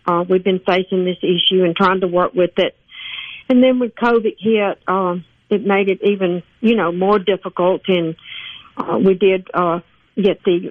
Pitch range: 175-200 Hz